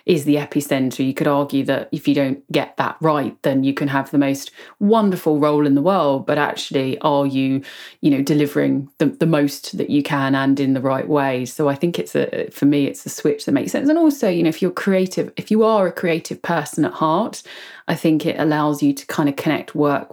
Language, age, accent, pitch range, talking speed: English, 30-49, British, 150-200 Hz, 240 wpm